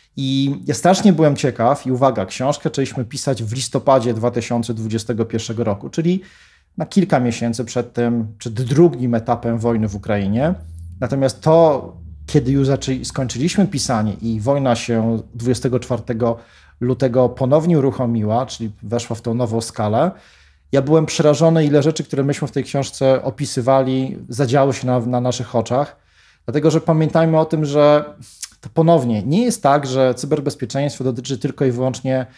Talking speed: 145 wpm